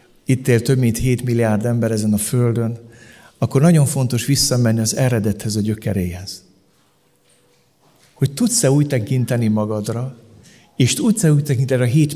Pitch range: 110-140 Hz